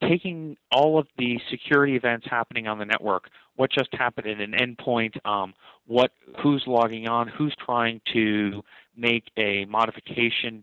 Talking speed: 150 wpm